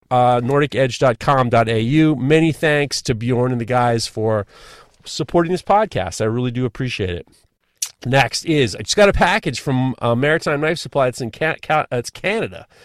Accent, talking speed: American, 175 wpm